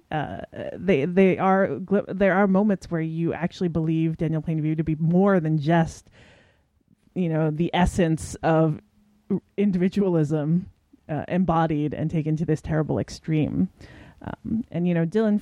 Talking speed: 145 wpm